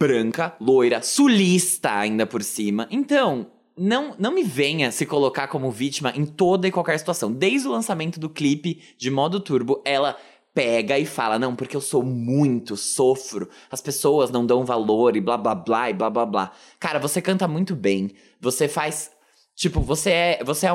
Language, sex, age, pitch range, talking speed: Portuguese, male, 20-39, 130-190 Hz, 180 wpm